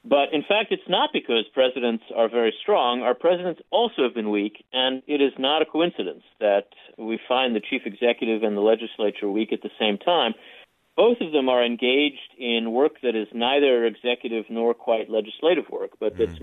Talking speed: 195 wpm